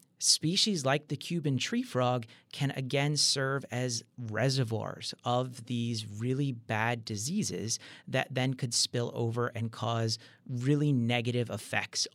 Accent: American